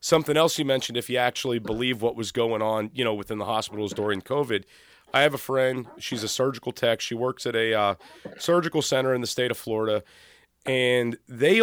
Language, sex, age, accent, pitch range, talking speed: English, male, 30-49, American, 115-155 Hz, 210 wpm